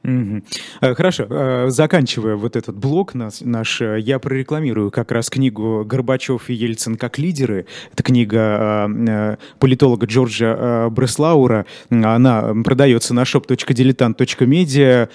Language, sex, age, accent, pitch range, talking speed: Russian, male, 20-39, native, 115-135 Hz, 100 wpm